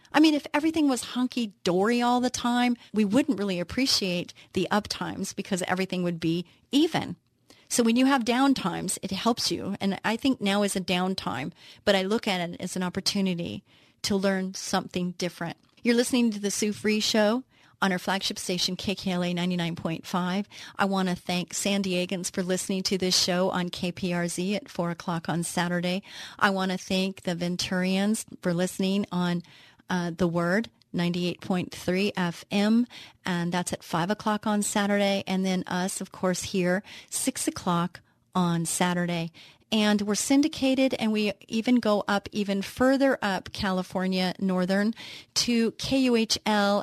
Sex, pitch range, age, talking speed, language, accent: female, 180-210 Hz, 40-59, 160 wpm, English, American